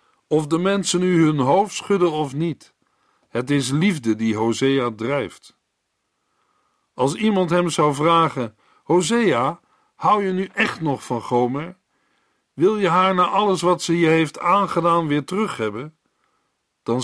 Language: Dutch